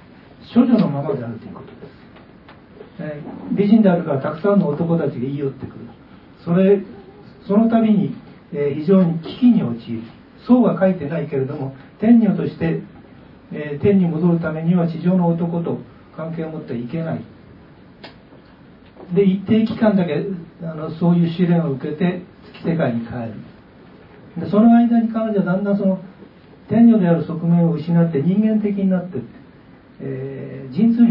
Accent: native